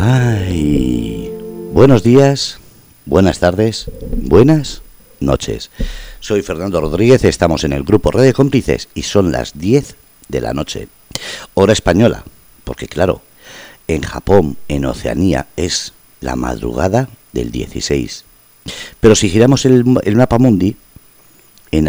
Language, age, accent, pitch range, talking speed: Spanish, 50-69, Spanish, 80-120 Hz, 125 wpm